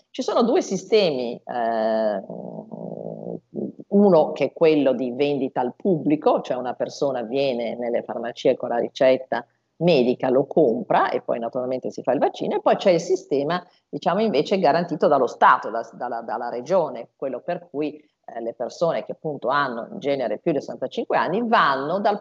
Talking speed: 165 wpm